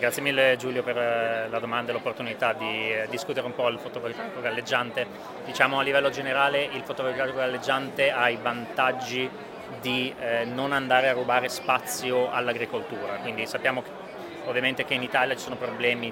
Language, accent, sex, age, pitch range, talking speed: Italian, native, male, 30-49, 115-130 Hz, 160 wpm